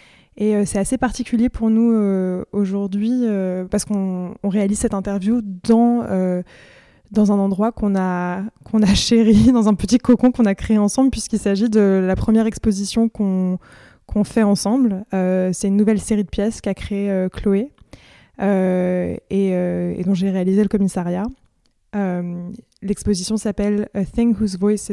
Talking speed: 175 wpm